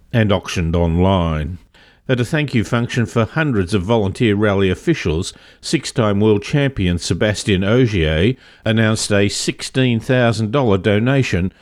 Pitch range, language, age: 100-125 Hz, English, 50-69